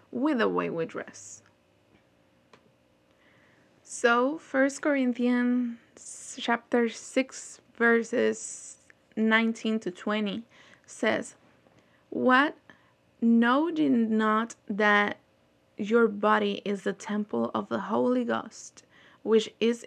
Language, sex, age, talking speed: English, female, 20-39, 95 wpm